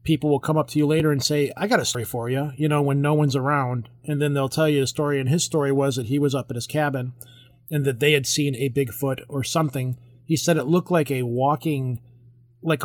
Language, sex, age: English, male, 30-49